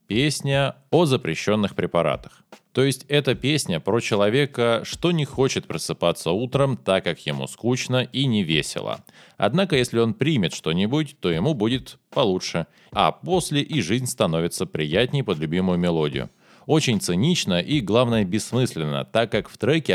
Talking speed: 145 wpm